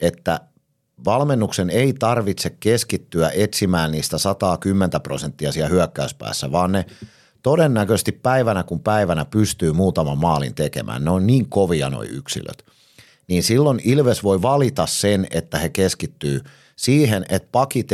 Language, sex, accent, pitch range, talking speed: Finnish, male, native, 80-105 Hz, 130 wpm